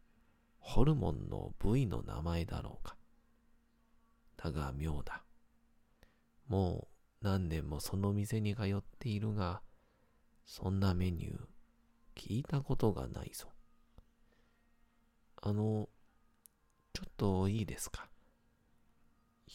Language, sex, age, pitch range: Japanese, male, 40-59, 85-110 Hz